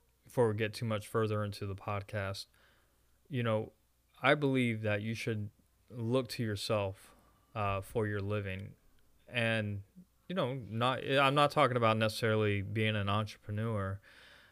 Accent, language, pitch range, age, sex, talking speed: American, English, 105-120 Hz, 20-39, male, 150 wpm